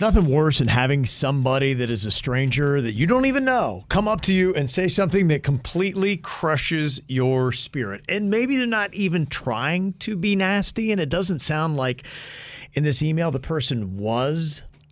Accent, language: American, English